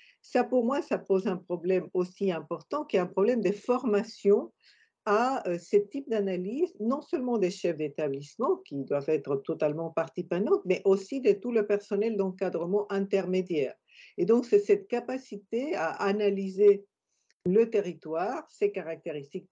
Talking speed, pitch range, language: 150 wpm, 170-225 Hz, French